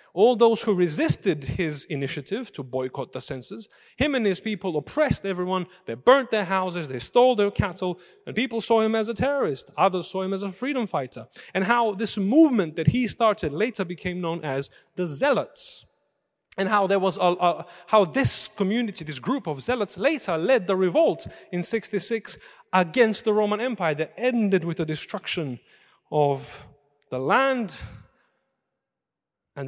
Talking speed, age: 160 wpm, 30-49